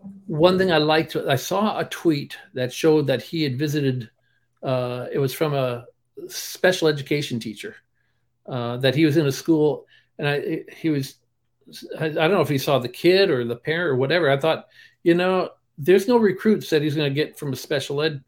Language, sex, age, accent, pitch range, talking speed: English, male, 50-69, American, 135-180 Hz, 205 wpm